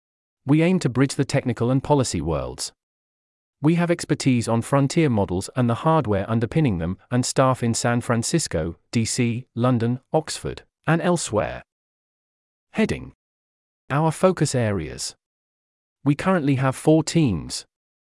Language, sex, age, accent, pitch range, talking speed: English, male, 40-59, British, 110-140 Hz, 130 wpm